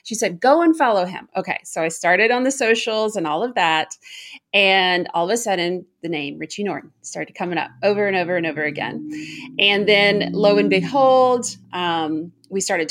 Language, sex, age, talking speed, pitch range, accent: English, female, 30-49, 200 wpm, 180-245 Hz, American